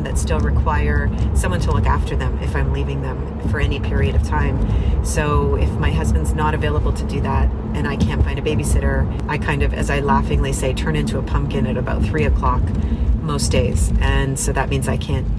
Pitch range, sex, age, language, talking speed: 115-155 Hz, female, 40-59, English, 215 wpm